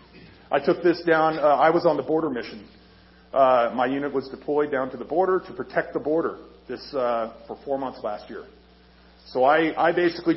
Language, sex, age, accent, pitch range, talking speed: English, male, 40-59, American, 130-165 Hz, 205 wpm